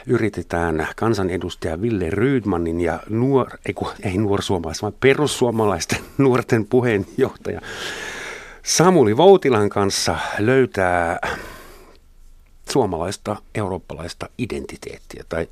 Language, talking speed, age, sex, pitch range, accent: Finnish, 80 wpm, 50-69, male, 90-120 Hz, native